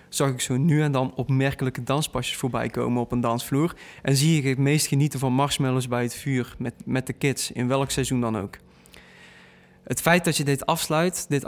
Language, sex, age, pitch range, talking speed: Dutch, male, 20-39, 125-145 Hz, 210 wpm